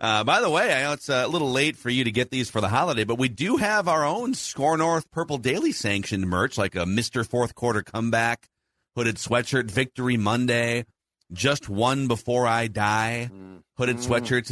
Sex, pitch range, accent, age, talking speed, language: male, 95-120 Hz, American, 40-59, 195 wpm, English